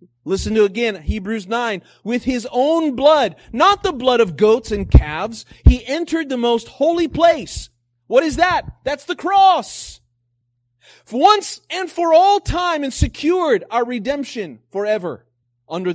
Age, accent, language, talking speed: 30-49, American, English, 155 wpm